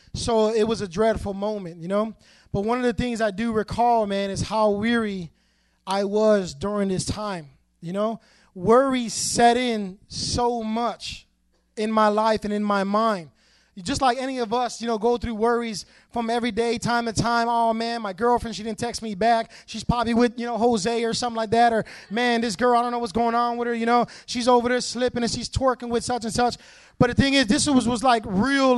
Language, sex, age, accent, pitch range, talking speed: English, male, 20-39, American, 210-240 Hz, 225 wpm